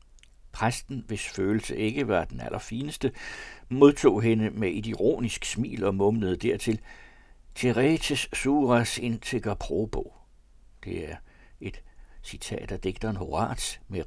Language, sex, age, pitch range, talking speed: Danish, male, 60-79, 95-125 Hz, 120 wpm